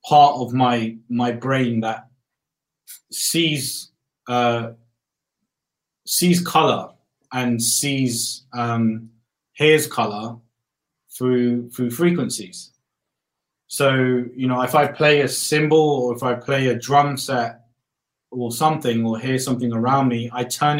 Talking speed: 120 wpm